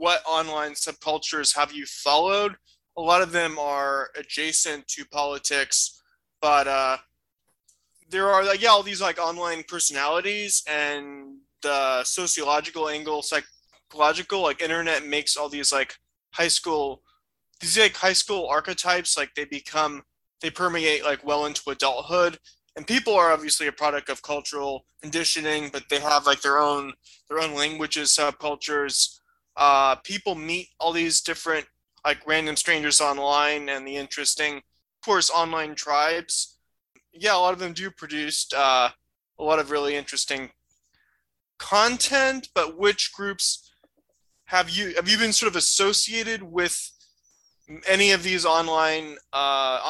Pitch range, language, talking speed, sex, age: 145-175 Hz, English, 145 wpm, male, 20-39